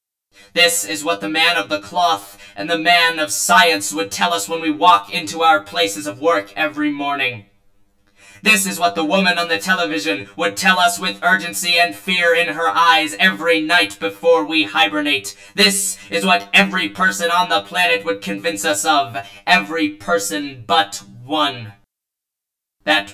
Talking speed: 170 wpm